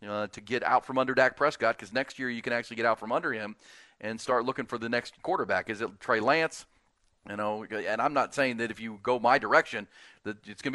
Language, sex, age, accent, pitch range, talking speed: English, male, 40-59, American, 110-135 Hz, 250 wpm